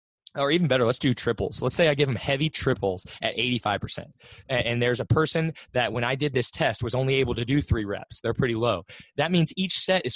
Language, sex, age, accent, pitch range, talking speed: English, male, 20-39, American, 105-135 Hz, 235 wpm